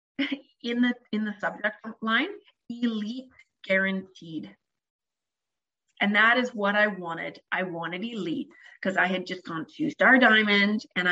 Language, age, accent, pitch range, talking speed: English, 30-49, American, 195-255 Hz, 140 wpm